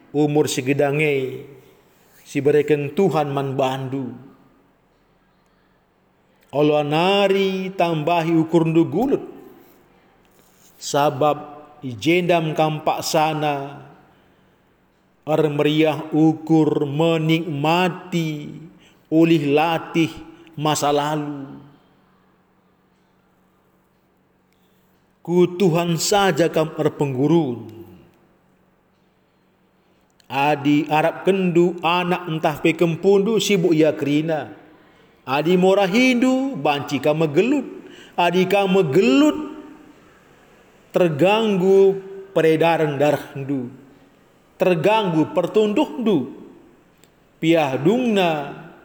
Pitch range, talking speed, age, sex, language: 145-180 Hz, 65 wpm, 40-59, male, Indonesian